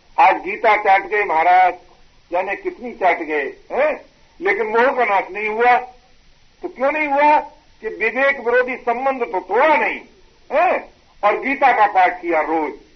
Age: 50-69